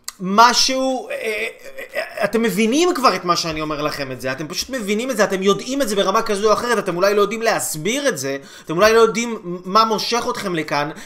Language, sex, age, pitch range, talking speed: Hebrew, male, 20-39, 175-230 Hz, 210 wpm